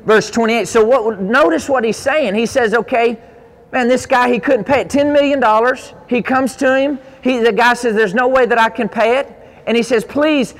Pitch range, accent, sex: 205-250 Hz, American, male